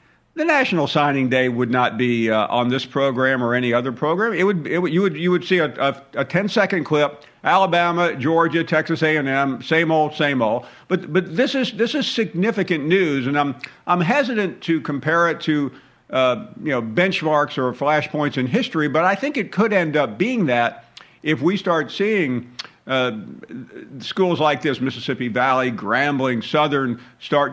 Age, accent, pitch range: 50-69, American, 125-165 Hz